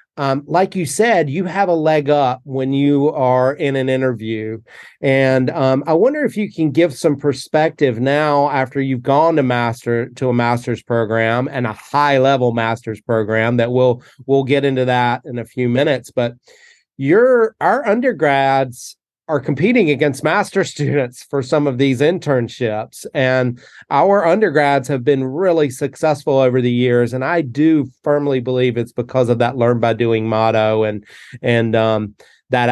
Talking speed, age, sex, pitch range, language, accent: 170 wpm, 30-49, male, 120-150 Hz, English, American